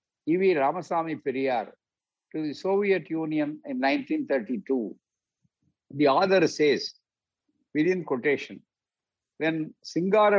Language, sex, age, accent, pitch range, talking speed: Tamil, male, 60-79, native, 145-185 Hz, 90 wpm